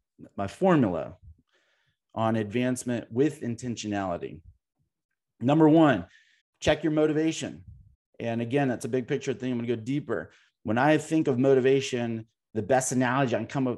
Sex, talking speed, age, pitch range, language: male, 155 wpm, 30-49, 115-140 Hz, English